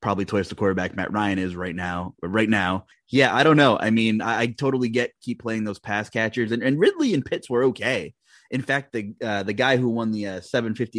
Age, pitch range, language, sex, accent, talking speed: 30-49, 100-130 Hz, English, male, American, 240 wpm